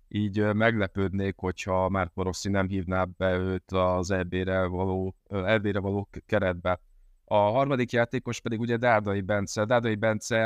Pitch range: 100-110 Hz